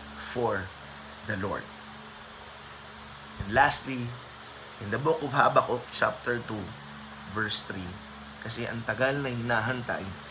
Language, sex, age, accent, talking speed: Filipino, male, 20-39, native, 110 wpm